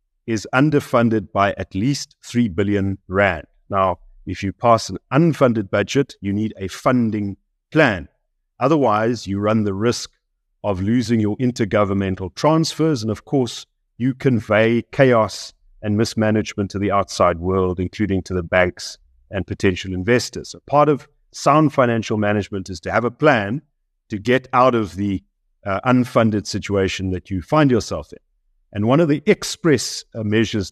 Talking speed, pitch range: 155 wpm, 95-125 Hz